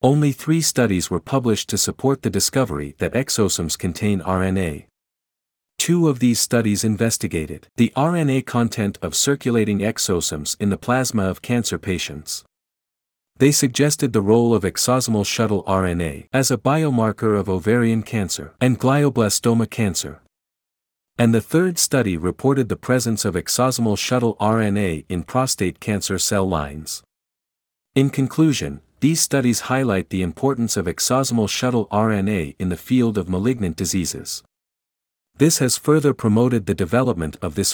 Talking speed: 140 wpm